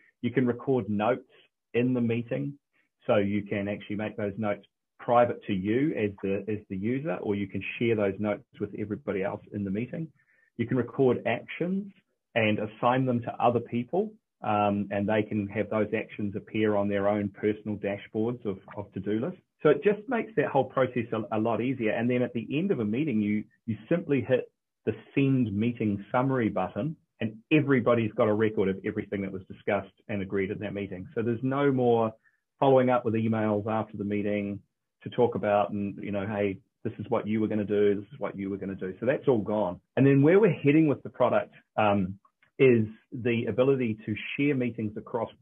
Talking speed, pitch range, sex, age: 210 wpm, 100-125 Hz, male, 30-49